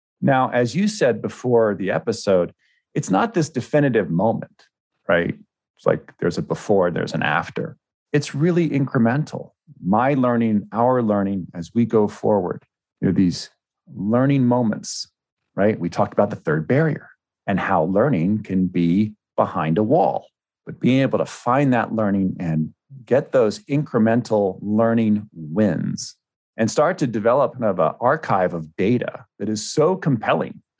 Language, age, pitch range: English, 40-59, 105-140 Hz